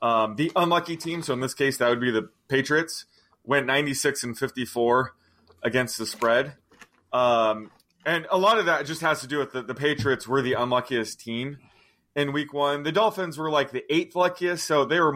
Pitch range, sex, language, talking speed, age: 115-150 Hz, male, English, 200 wpm, 30-49